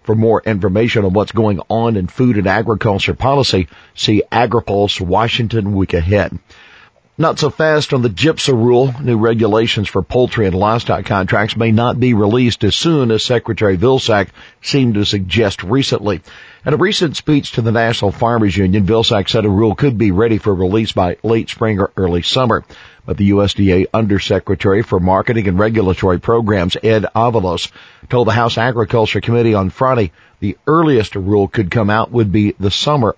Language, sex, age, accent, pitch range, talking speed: English, male, 50-69, American, 95-115 Hz, 175 wpm